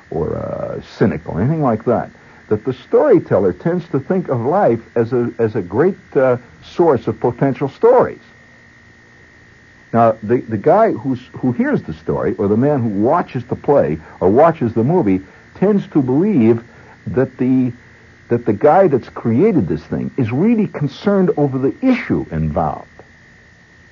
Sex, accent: male, American